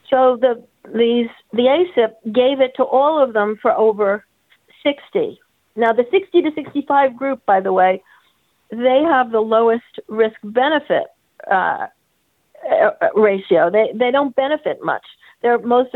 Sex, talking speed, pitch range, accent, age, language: female, 135 wpm, 200-255 Hz, American, 50-69, English